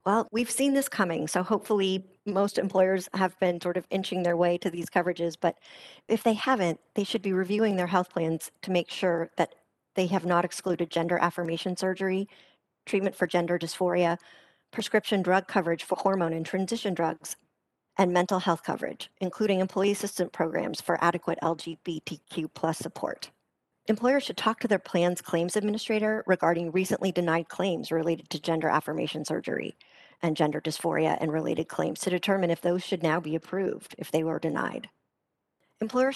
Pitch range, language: 170-195 Hz, English